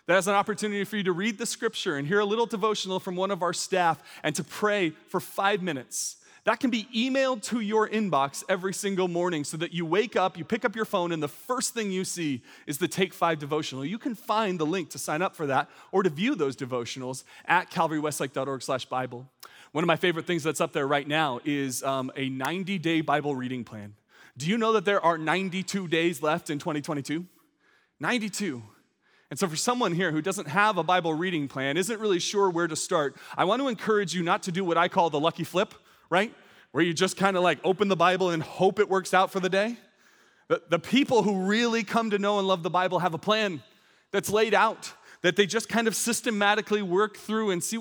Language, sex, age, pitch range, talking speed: English, male, 30-49, 160-210 Hz, 225 wpm